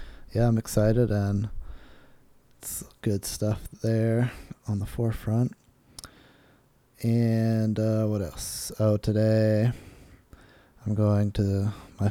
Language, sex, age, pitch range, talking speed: English, male, 20-39, 105-115 Hz, 105 wpm